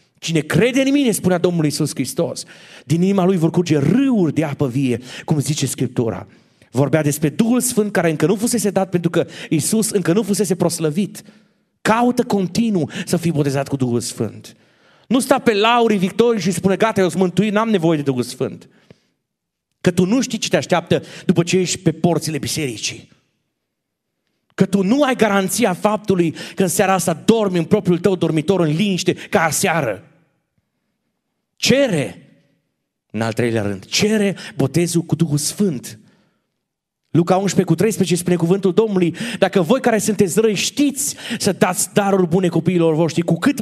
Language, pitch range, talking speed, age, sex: Romanian, 160-210 Hz, 165 wpm, 40-59, male